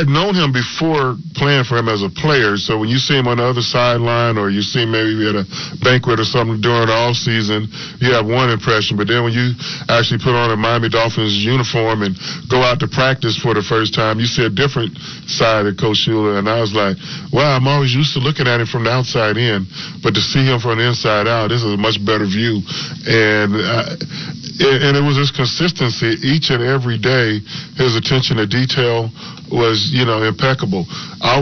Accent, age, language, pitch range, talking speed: American, 40-59, English, 115-140 Hz, 225 wpm